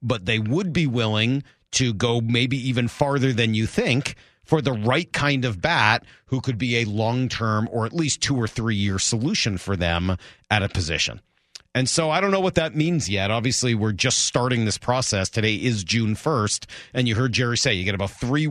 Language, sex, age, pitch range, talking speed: English, male, 40-59, 105-140 Hz, 210 wpm